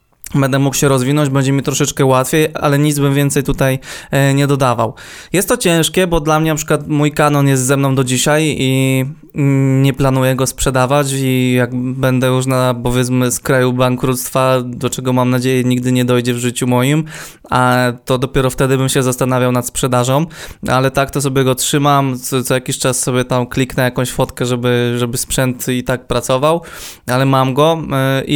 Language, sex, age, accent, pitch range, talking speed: Polish, male, 20-39, native, 125-140 Hz, 185 wpm